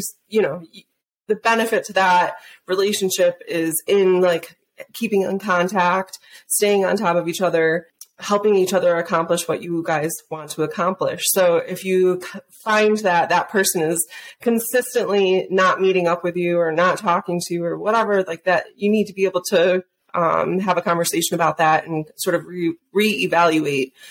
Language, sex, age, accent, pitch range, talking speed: English, female, 20-39, American, 175-205 Hz, 170 wpm